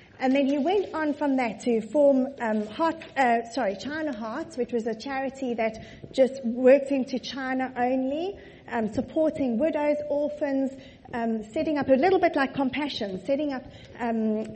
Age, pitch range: 30-49, 240-330 Hz